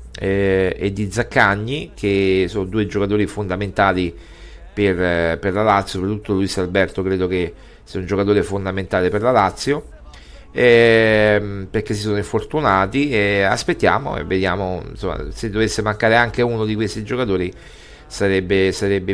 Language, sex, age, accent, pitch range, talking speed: Italian, male, 40-59, native, 95-115 Hz, 130 wpm